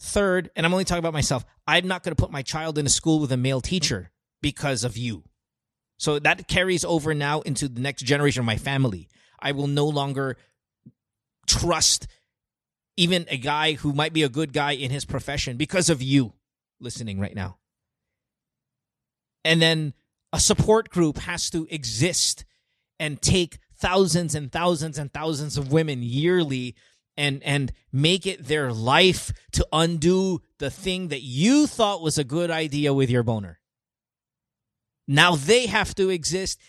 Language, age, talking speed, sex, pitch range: English, 30-49, 165 wpm, male, 130-175 Hz